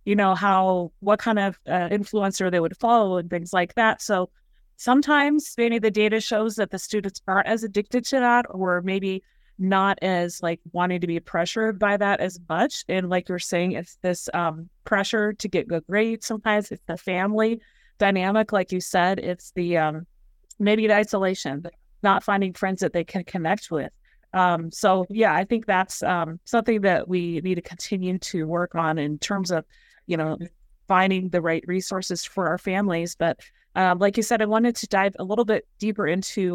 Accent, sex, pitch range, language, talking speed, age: American, female, 175-210 Hz, English, 195 wpm, 30-49